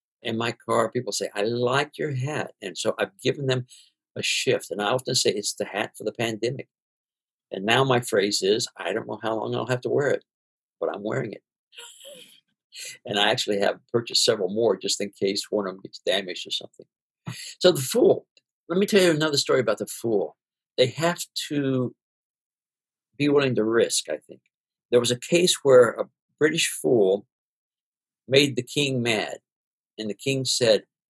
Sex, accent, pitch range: male, American, 115-155 Hz